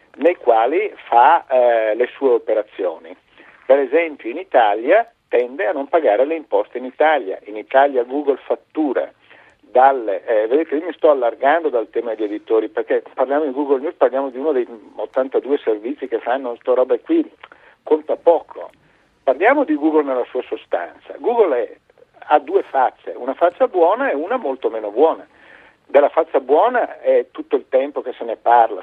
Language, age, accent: Italian, 50-69, native